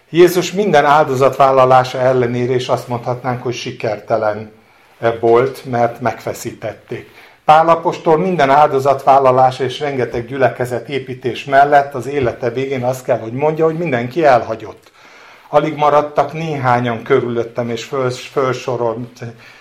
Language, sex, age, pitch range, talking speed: Hungarian, male, 50-69, 120-155 Hz, 110 wpm